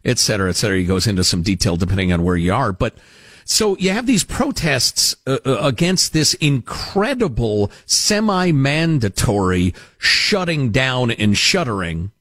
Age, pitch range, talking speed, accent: 50-69, 110-180 Hz, 145 wpm, American